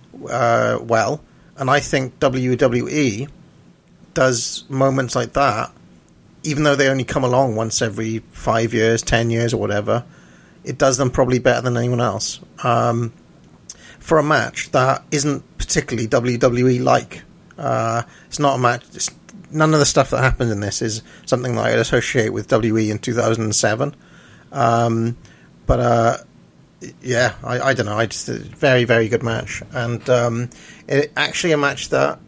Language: English